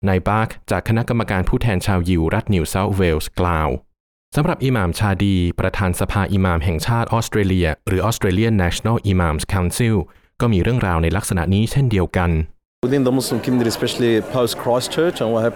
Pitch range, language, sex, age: 90-115 Hz, Thai, male, 20-39